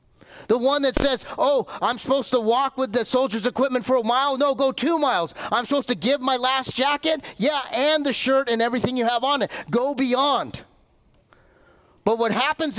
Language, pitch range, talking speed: English, 185-275 Hz, 195 wpm